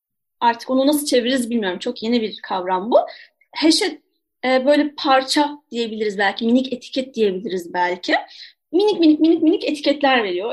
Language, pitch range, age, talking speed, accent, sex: Turkish, 245-315 Hz, 30-49, 150 wpm, native, female